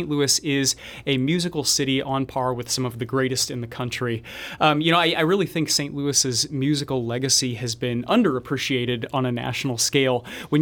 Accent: American